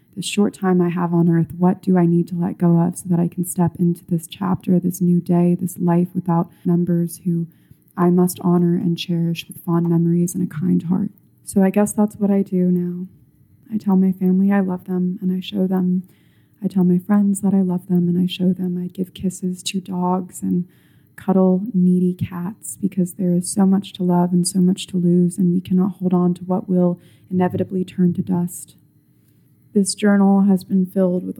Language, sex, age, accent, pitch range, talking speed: English, female, 20-39, American, 175-185 Hz, 215 wpm